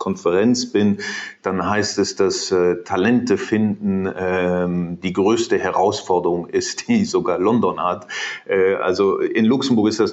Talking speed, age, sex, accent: 135 wpm, 40-59, male, German